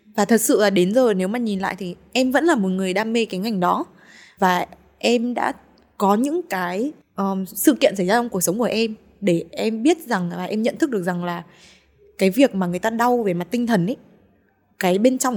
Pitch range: 180-225 Hz